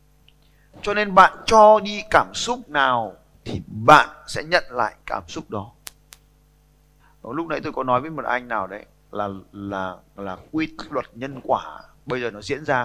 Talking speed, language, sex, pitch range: 175 wpm, Vietnamese, male, 125-160 Hz